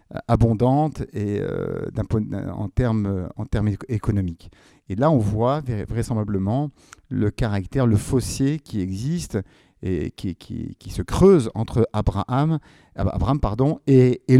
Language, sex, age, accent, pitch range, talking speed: French, male, 50-69, French, 105-125 Hz, 140 wpm